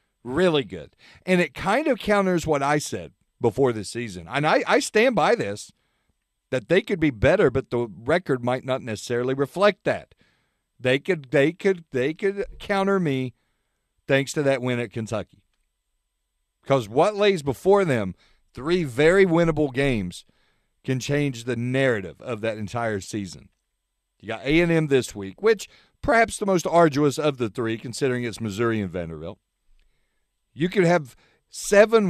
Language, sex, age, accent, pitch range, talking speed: English, male, 50-69, American, 120-180 Hz, 160 wpm